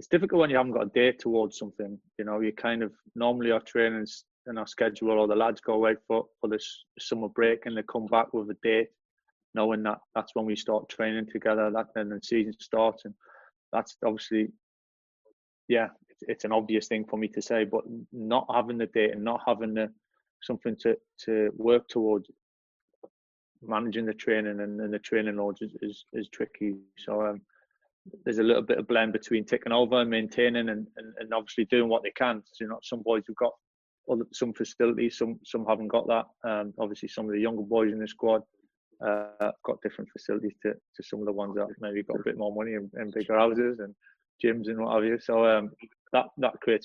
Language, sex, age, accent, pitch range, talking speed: English, male, 20-39, British, 105-115 Hz, 215 wpm